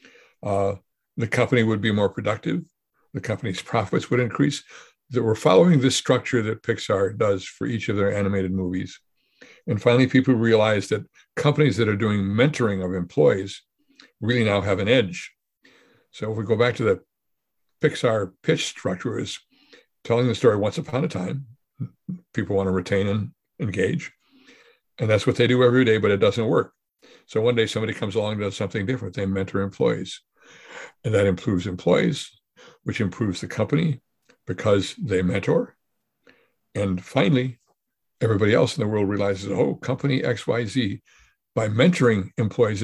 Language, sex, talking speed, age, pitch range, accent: English, male, 160 wpm, 60-79, 100-125 Hz, American